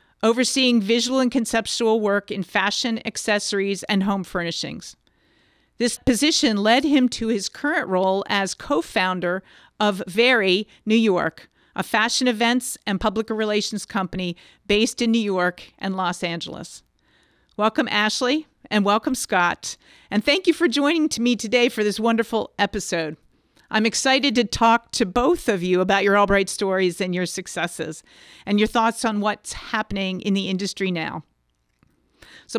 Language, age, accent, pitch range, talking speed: English, 50-69, American, 190-240 Hz, 150 wpm